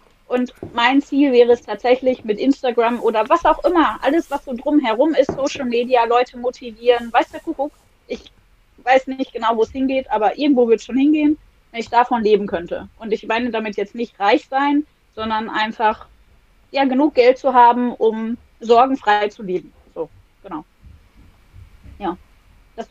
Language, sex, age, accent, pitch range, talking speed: German, female, 20-39, German, 225-270 Hz, 170 wpm